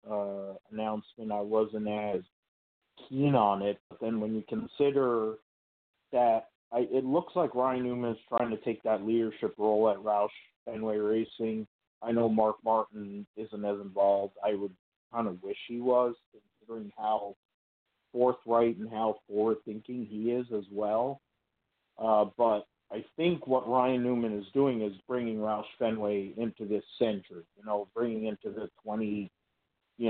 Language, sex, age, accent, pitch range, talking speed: English, male, 50-69, American, 105-120 Hz, 155 wpm